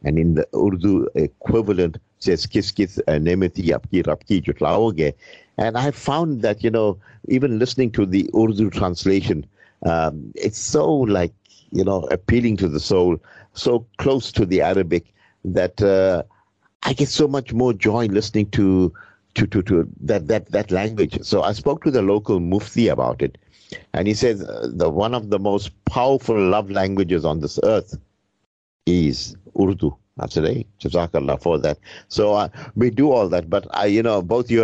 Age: 50-69